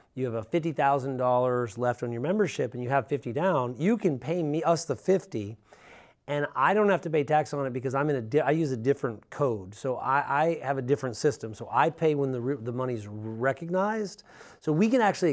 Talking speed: 235 wpm